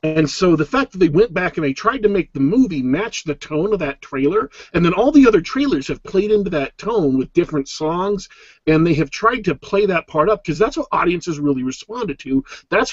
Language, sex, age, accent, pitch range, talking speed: English, male, 50-69, American, 145-215 Hz, 240 wpm